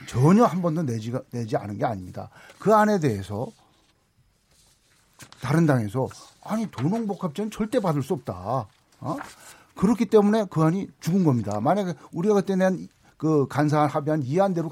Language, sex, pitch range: Korean, male, 120-170 Hz